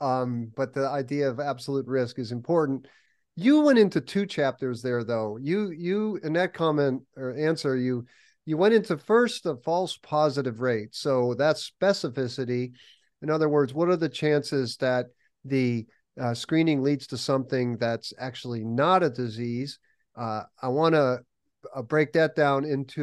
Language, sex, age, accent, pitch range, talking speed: English, male, 40-59, American, 125-155 Hz, 160 wpm